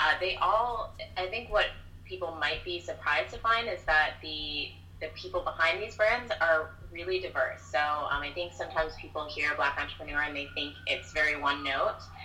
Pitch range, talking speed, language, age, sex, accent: 90-155 Hz, 190 wpm, English, 20-39, female, American